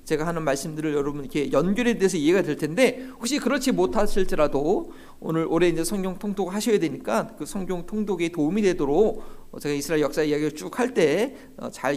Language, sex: Korean, male